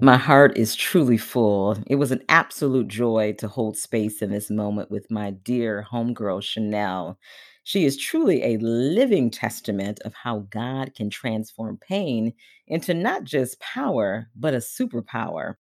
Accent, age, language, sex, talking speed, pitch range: American, 40-59, English, female, 150 wpm, 105-140 Hz